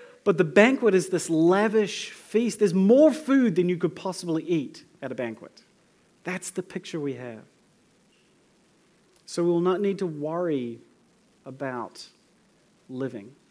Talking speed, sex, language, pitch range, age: 140 wpm, male, English, 135-175 Hz, 30-49